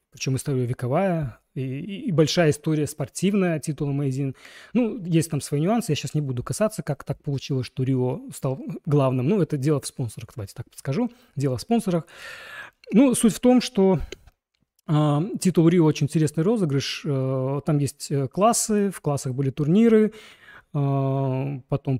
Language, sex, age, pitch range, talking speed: Russian, male, 30-49, 140-185 Hz, 165 wpm